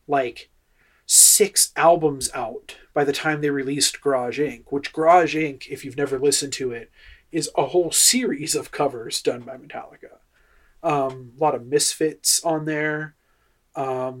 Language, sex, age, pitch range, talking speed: English, male, 30-49, 130-155 Hz, 155 wpm